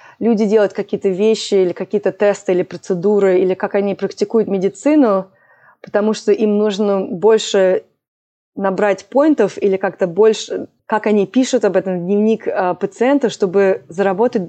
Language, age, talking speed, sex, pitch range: Russian, 20-39, 145 wpm, female, 185-220 Hz